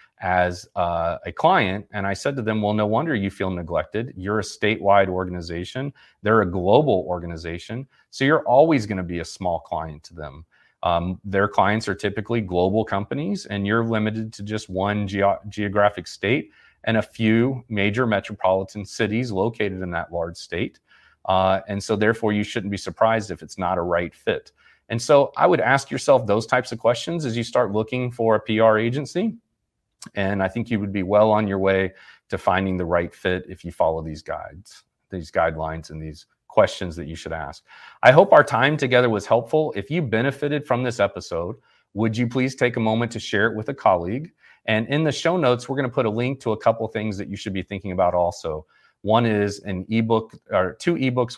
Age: 30-49